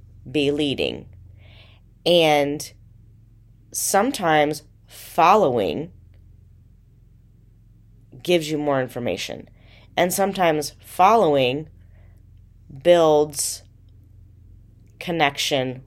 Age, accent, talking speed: 30-49, American, 55 wpm